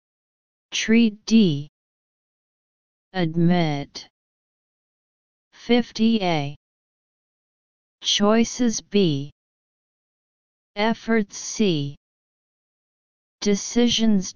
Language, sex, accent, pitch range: English, female, American, 150-220 Hz